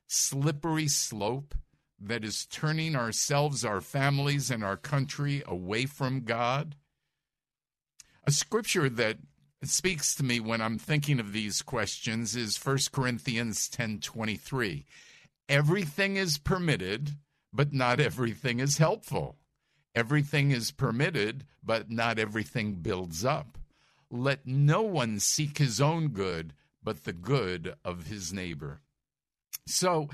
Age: 50-69